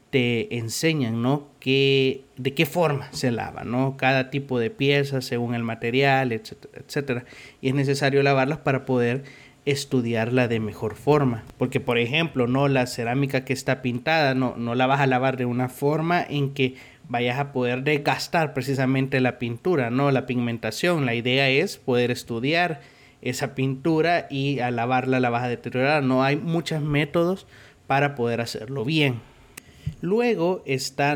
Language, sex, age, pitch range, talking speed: Spanish, male, 30-49, 130-155 Hz, 160 wpm